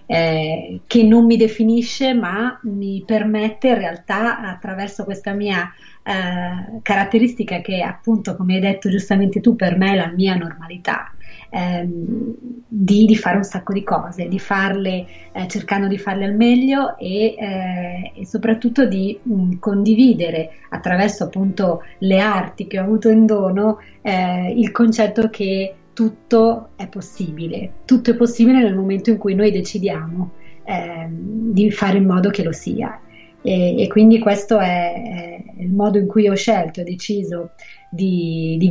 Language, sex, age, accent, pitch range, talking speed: Italian, female, 30-49, native, 180-215 Hz, 155 wpm